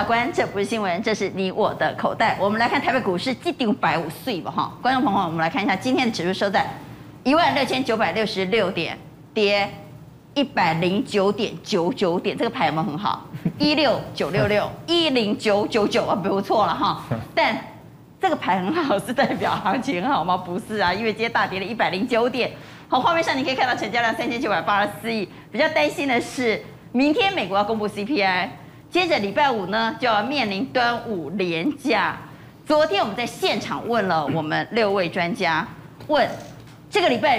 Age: 30-49